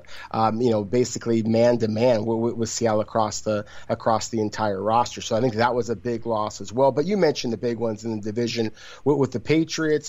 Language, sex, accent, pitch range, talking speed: English, male, American, 115-135 Hz, 225 wpm